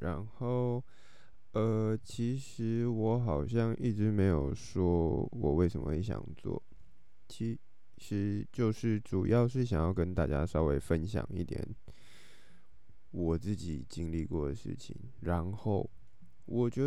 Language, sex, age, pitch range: Chinese, male, 20-39, 85-110 Hz